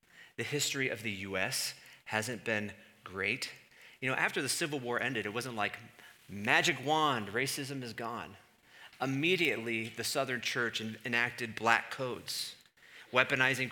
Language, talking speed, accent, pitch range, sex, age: English, 135 wpm, American, 120-150 Hz, male, 40-59